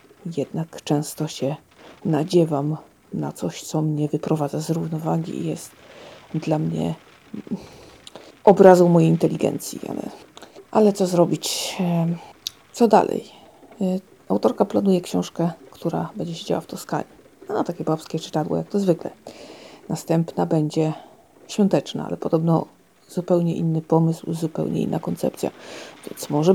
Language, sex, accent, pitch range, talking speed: Polish, female, native, 155-180 Hz, 120 wpm